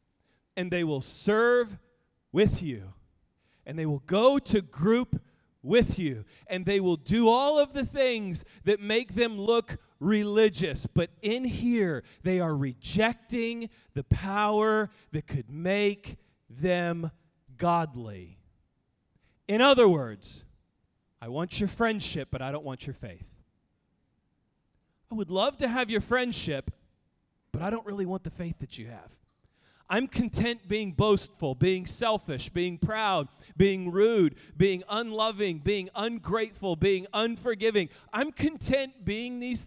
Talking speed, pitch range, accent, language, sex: 135 wpm, 155-230 Hz, American, English, male